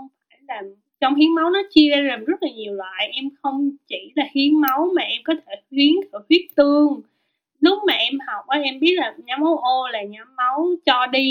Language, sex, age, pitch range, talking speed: Vietnamese, female, 20-39, 225-310 Hz, 220 wpm